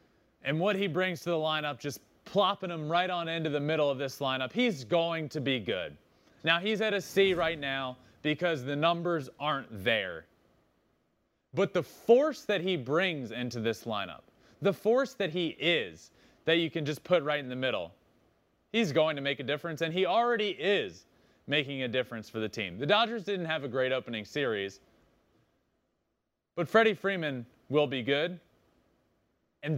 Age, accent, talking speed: 30-49, American, 180 wpm